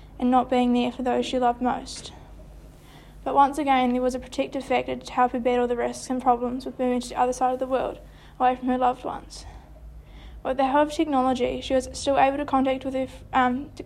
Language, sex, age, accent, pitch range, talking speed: English, female, 10-29, Australian, 245-265 Hz, 235 wpm